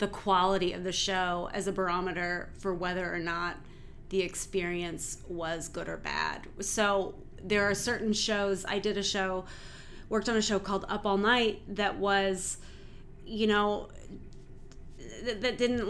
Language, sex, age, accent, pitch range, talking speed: English, female, 30-49, American, 185-215 Hz, 160 wpm